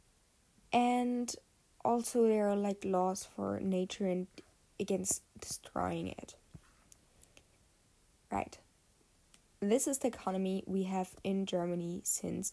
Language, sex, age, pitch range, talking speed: English, female, 10-29, 185-220 Hz, 105 wpm